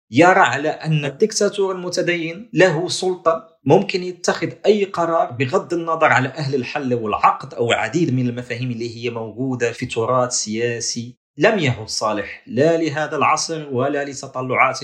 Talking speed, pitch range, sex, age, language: 140 wpm, 120-160 Hz, male, 40-59, Arabic